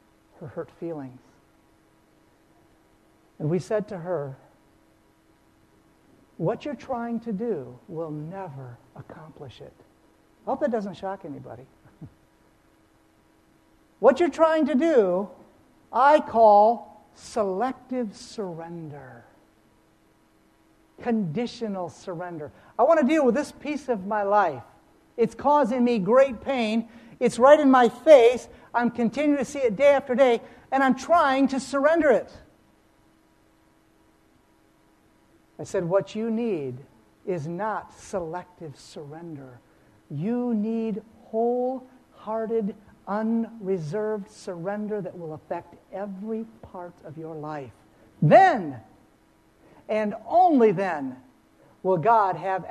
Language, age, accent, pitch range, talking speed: English, 60-79, American, 170-245 Hz, 110 wpm